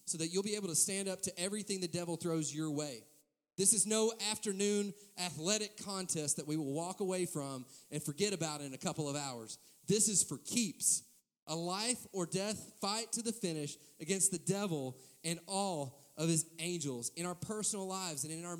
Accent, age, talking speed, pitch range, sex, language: American, 30-49, 200 wpm, 145-195 Hz, male, English